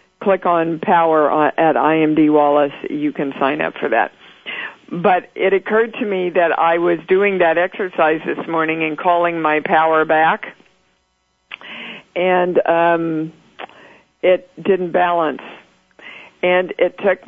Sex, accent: female, American